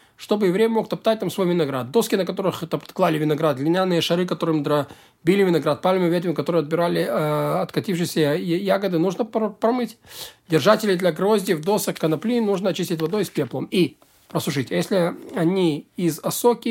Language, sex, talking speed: Russian, male, 155 wpm